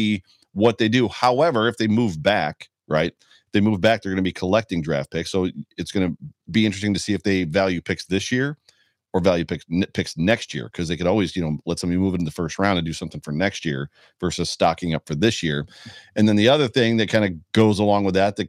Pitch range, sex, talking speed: 90-105 Hz, male, 255 wpm